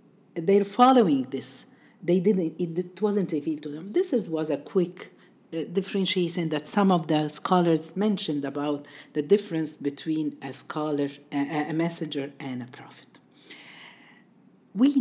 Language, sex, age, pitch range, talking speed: Arabic, female, 50-69, 145-215 Hz, 150 wpm